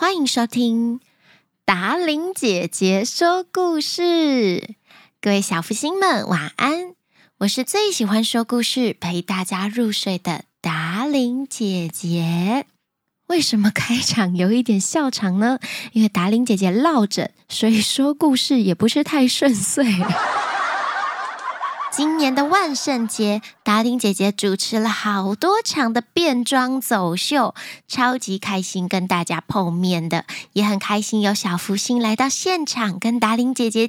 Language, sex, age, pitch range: Chinese, female, 10-29, 195-280 Hz